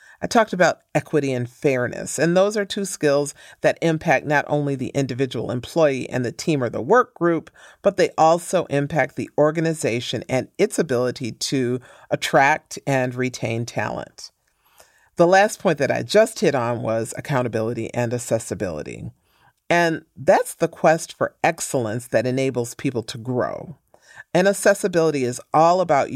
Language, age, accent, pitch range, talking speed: English, 40-59, American, 125-165 Hz, 155 wpm